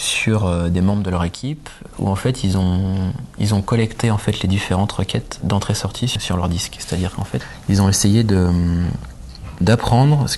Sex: male